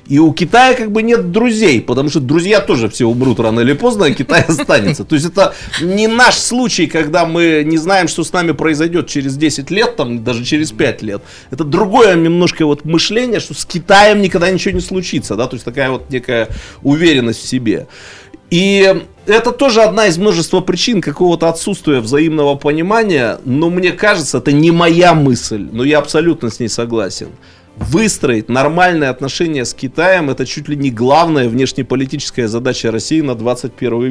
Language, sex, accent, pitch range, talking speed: Russian, male, native, 130-175 Hz, 175 wpm